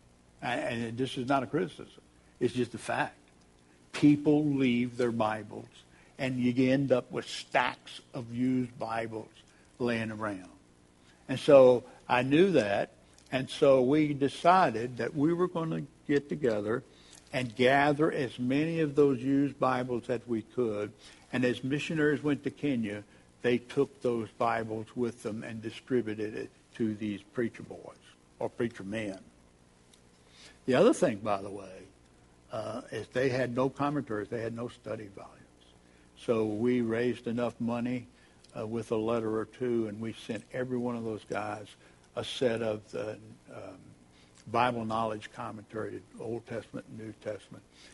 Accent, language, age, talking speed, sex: American, English, 60-79, 155 wpm, male